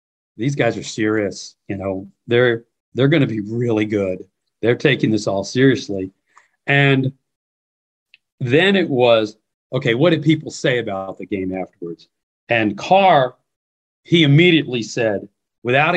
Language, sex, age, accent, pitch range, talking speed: English, male, 40-59, American, 105-145 Hz, 135 wpm